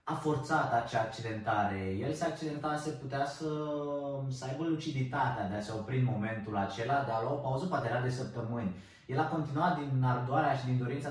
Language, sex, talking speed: Romanian, male, 195 wpm